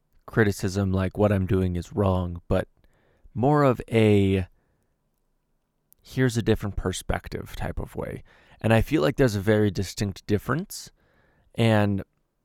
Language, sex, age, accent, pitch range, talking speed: English, male, 20-39, American, 95-115 Hz, 135 wpm